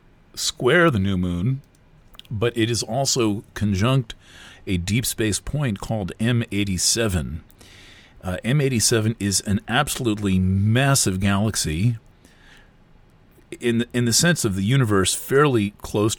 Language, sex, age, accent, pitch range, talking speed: English, male, 40-59, American, 95-120 Hz, 120 wpm